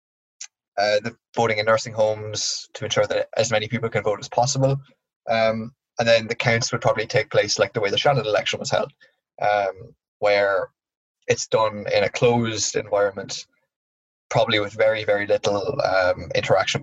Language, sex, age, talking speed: English, male, 20-39, 170 wpm